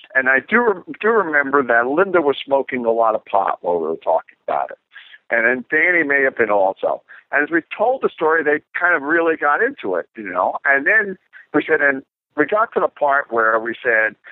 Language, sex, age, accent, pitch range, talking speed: English, male, 60-79, American, 130-190 Hz, 225 wpm